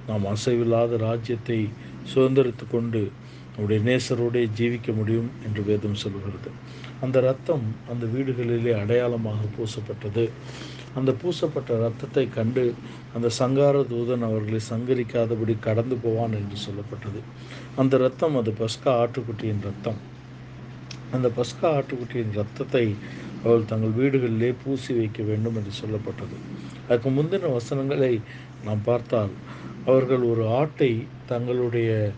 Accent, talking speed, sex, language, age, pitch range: native, 110 wpm, male, Tamil, 50-69, 115-130 Hz